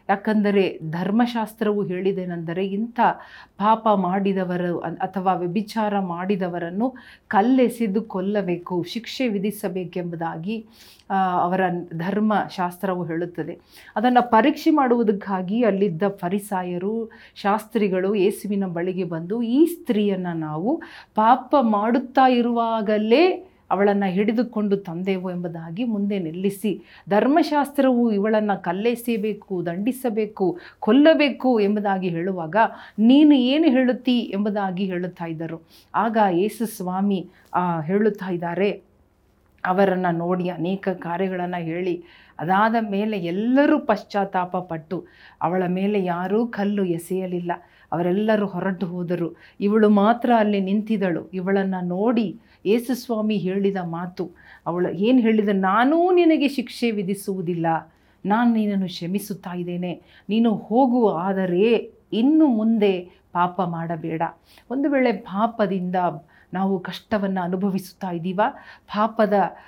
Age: 40-59